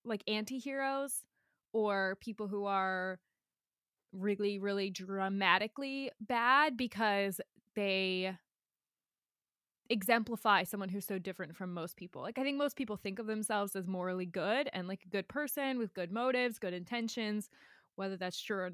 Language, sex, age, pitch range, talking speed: English, female, 20-39, 190-245 Hz, 145 wpm